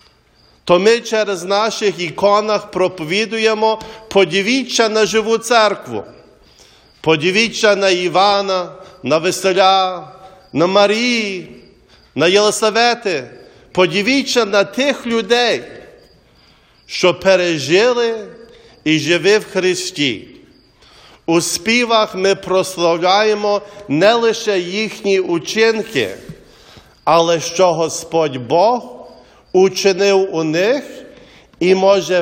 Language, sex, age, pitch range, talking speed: English, male, 50-69, 180-220 Hz, 85 wpm